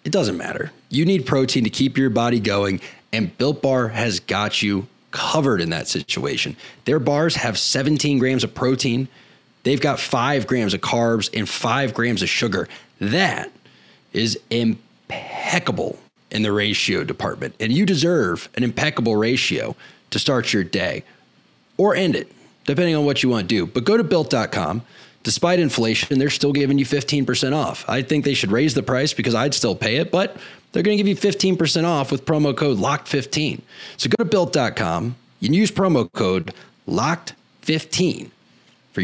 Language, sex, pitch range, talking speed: English, male, 115-150 Hz, 170 wpm